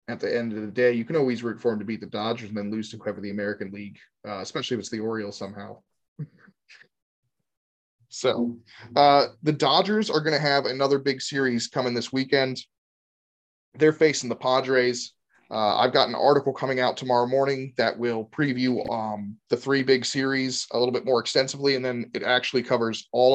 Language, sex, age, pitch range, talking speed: English, male, 30-49, 115-135 Hz, 200 wpm